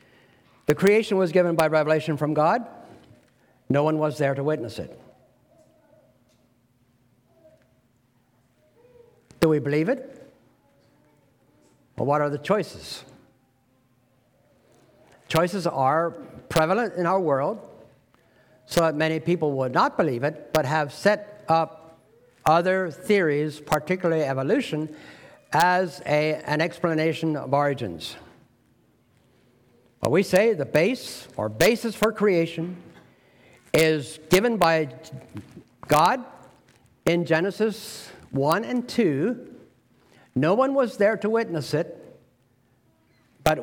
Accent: American